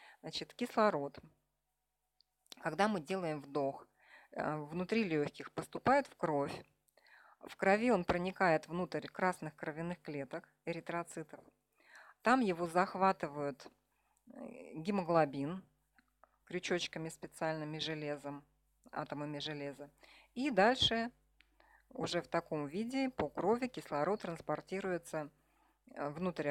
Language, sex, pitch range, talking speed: Russian, female, 155-195 Hz, 90 wpm